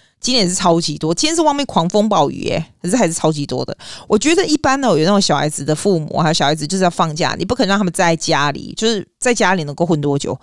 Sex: female